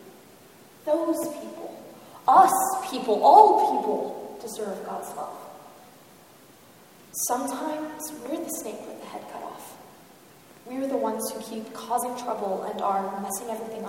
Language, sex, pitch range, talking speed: English, female, 225-270 Hz, 120 wpm